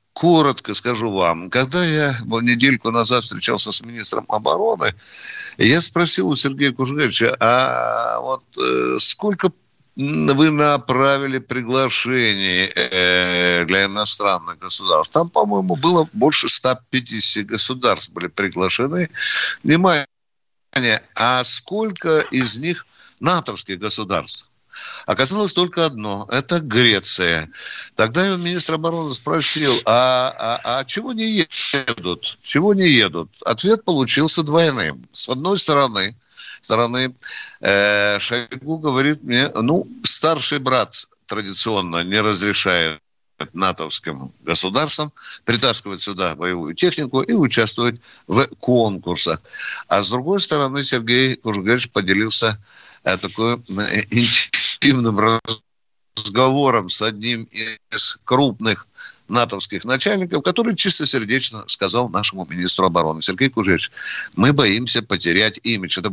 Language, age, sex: Russian, 60-79, male